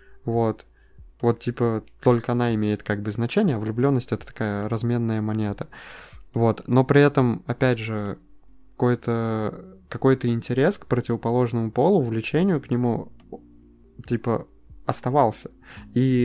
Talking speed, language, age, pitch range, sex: 120 wpm, Russian, 20-39, 110-130 Hz, male